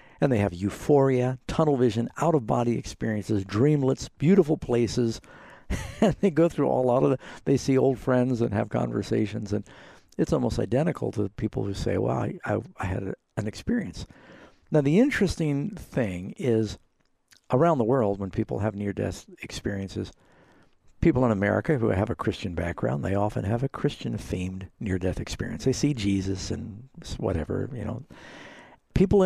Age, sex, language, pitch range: 60-79, male, English, 100-140 Hz